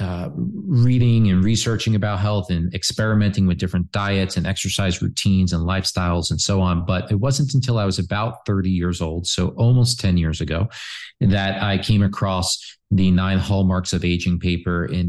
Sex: male